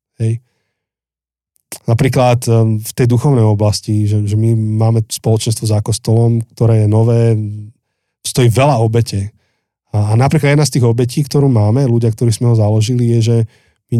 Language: Slovak